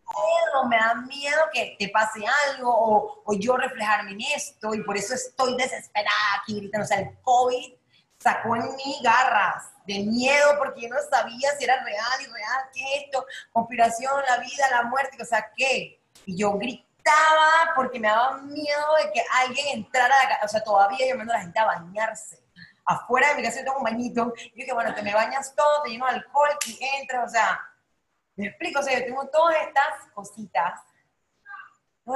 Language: Spanish